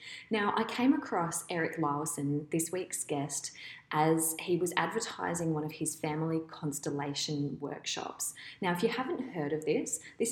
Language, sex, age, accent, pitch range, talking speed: English, female, 20-39, Australian, 155-200 Hz, 155 wpm